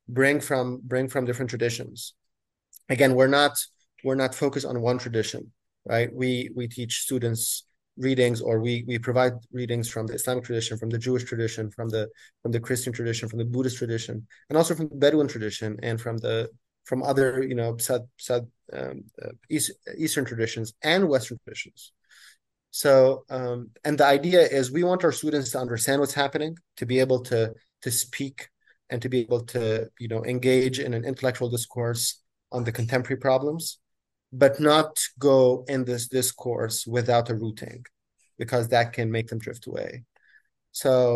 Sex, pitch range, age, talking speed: male, 115-130 Hz, 30-49, 175 wpm